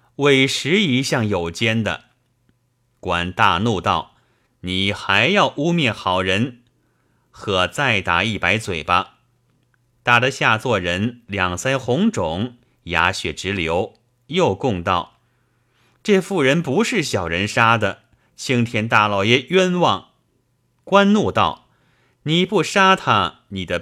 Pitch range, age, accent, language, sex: 105-135 Hz, 30-49, native, Chinese, male